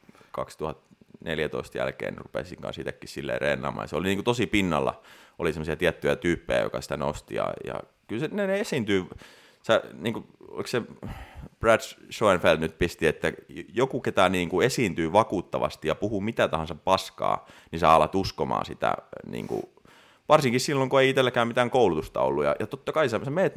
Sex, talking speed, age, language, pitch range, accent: male, 160 wpm, 30-49, Finnish, 80-100 Hz, native